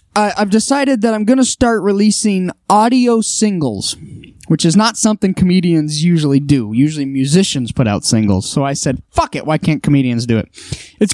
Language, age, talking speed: English, 20-39, 185 wpm